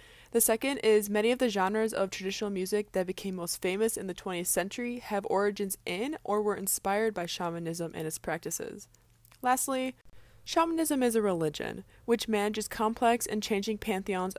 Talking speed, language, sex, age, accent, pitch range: 165 wpm, English, female, 20-39, American, 180-225 Hz